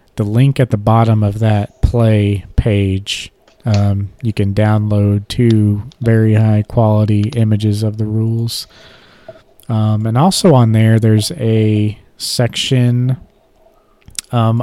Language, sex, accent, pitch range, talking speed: English, male, American, 105-125 Hz, 125 wpm